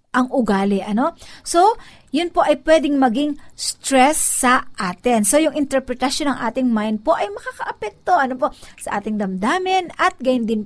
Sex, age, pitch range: female, 50-69, 220-305 Hz